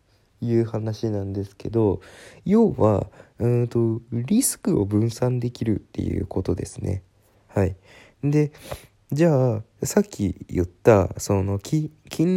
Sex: male